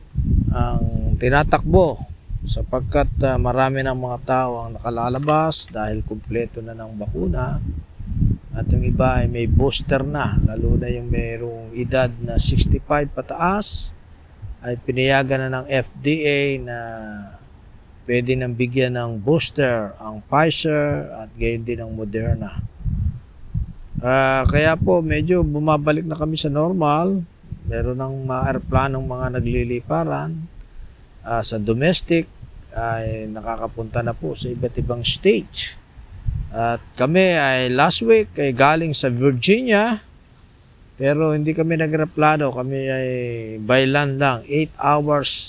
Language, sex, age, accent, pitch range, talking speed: Filipino, male, 40-59, native, 110-140 Hz, 125 wpm